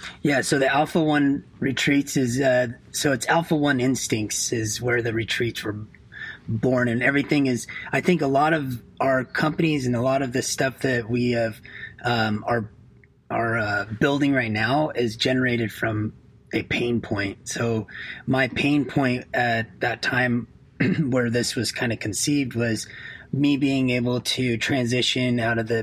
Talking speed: 170 wpm